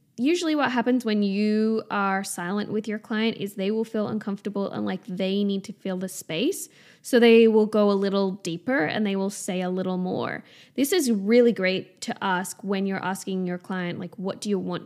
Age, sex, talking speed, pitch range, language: 10-29, female, 215 wpm, 195-250 Hz, English